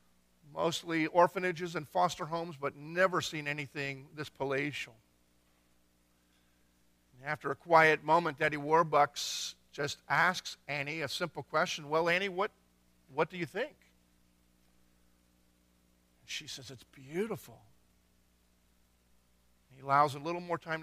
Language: English